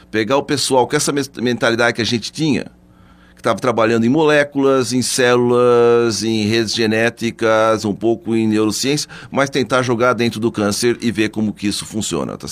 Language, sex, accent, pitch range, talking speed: Portuguese, male, Brazilian, 105-145 Hz, 175 wpm